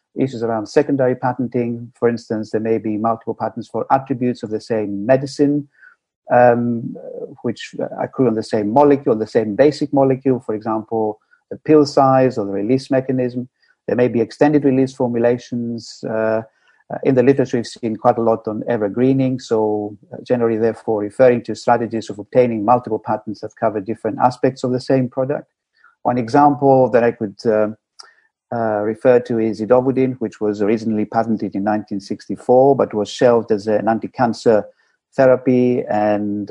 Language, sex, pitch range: English, male, 110-130 Hz